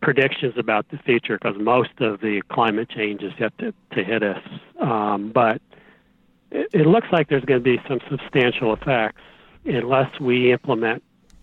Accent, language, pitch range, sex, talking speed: American, English, 110-135 Hz, male, 170 wpm